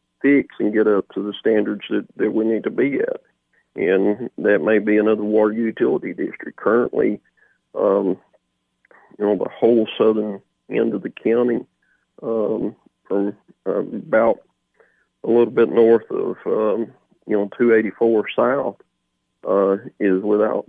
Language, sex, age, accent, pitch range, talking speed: English, male, 40-59, American, 100-110 Hz, 140 wpm